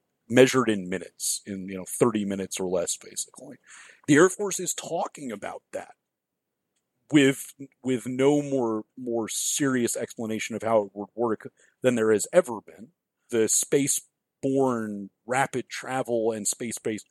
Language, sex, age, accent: English, male, 40-59, American